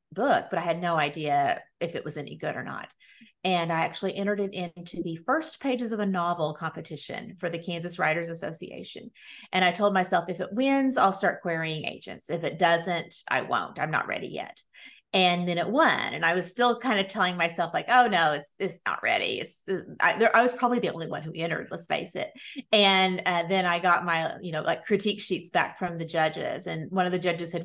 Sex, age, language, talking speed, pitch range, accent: female, 30-49, English, 230 wpm, 165-205 Hz, American